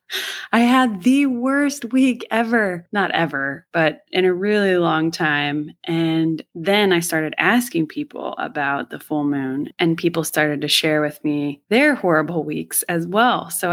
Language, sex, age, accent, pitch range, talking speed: English, female, 20-39, American, 155-205 Hz, 160 wpm